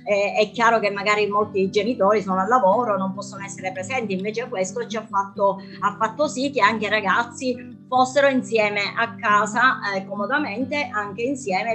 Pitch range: 195-230 Hz